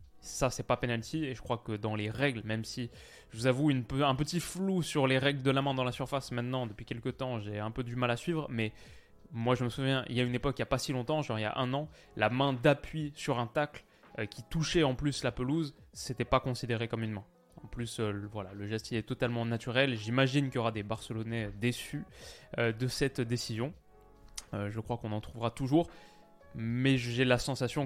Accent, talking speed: French, 245 wpm